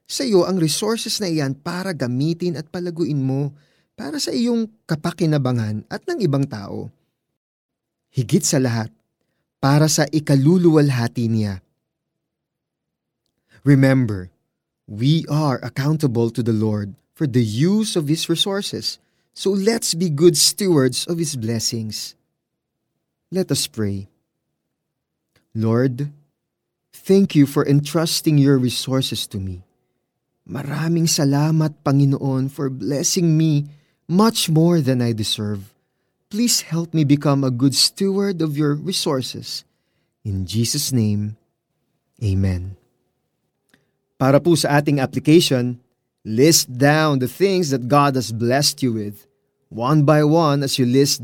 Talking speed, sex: 125 wpm, male